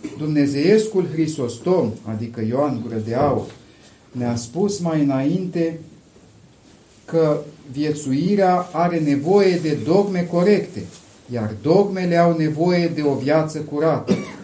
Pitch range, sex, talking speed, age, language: 135-175 Hz, male, 100 wpm, 40-59, Romanian